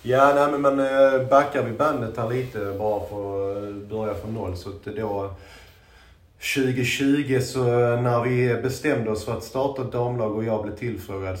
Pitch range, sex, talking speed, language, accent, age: 100-120 Hz, male, 175 wpm, Swedish, native, 30-49